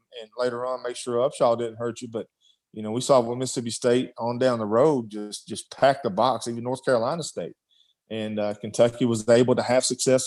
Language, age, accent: English, 40-59, American